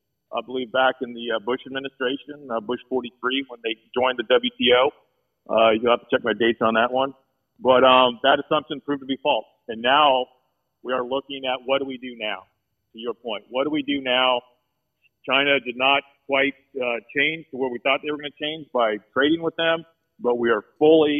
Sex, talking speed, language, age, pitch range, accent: male, 215 wpm, English, 50-69, 120-140 Hz, American